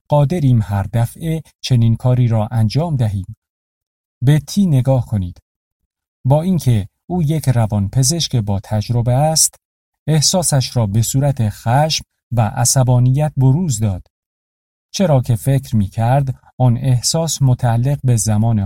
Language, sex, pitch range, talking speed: Persian, male, 105-140 Hz, 120 wpm